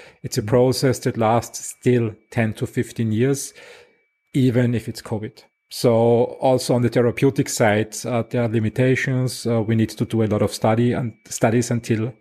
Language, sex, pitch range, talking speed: English, male, 115-130 Hz, 175 wpm